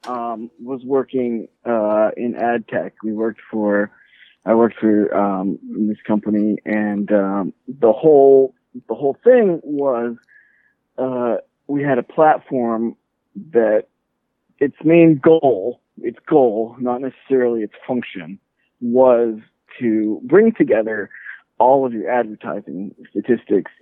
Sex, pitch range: male, 115-150 Hz